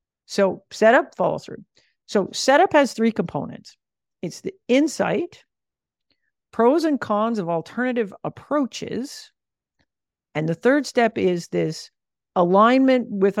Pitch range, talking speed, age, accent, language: 185-270 Hz, 115 wpm, 50-69, American, English